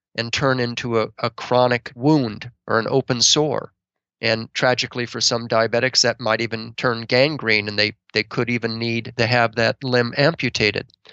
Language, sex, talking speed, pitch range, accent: English, male, 175 wpm, 115-130 Hz, American